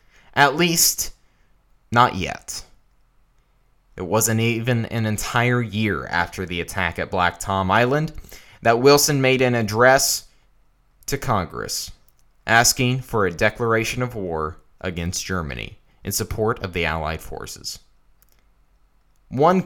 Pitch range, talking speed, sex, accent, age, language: 95-135 Hz, 120 wpm, male, American, 20-39, English